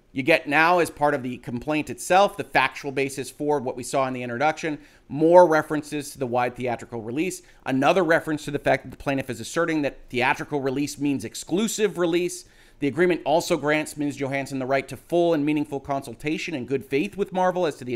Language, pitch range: English, 130-160 Hz